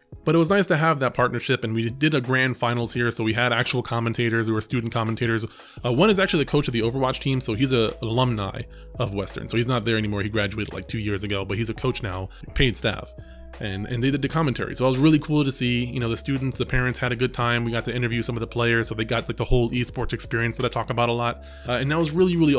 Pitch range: 115-135 Hz